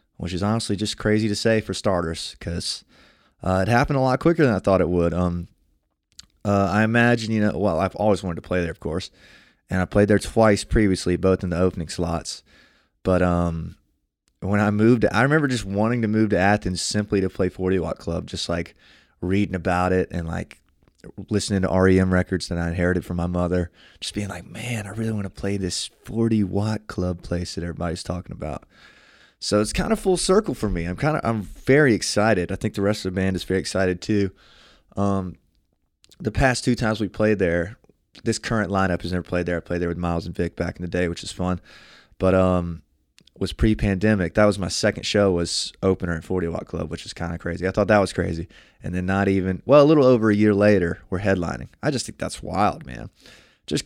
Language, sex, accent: English, male, American